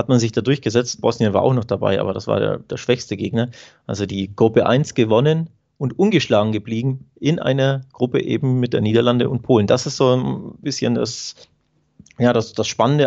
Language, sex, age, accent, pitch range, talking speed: German, male, 30-49, German, 110-135 Hz, 200 wpm